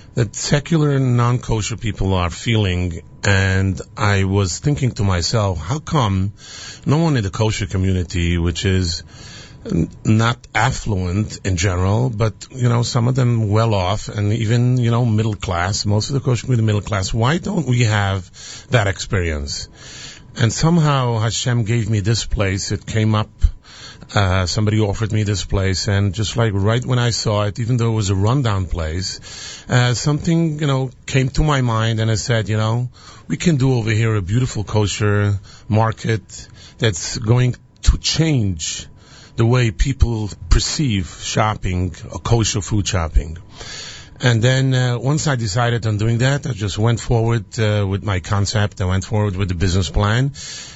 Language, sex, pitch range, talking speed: English, male, 100-125 Hz, 170 wpm